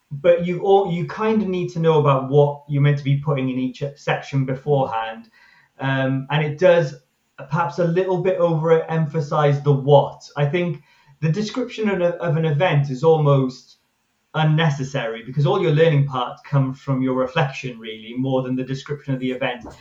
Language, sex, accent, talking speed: English, male, British, 180 wpm